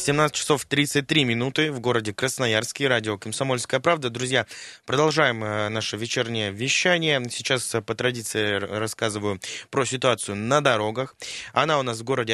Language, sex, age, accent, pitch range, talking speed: Russian, male, 20-39, native, 110-140 Hz, 140 wpm